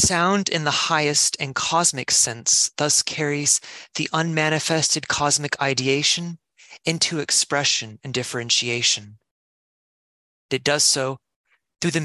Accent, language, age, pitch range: American, English, 20-39, 125-155 Hz